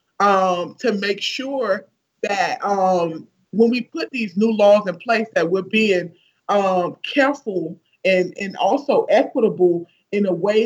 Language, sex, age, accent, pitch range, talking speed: English, male, 30-49, American, 185-225 Hz, 145 wpm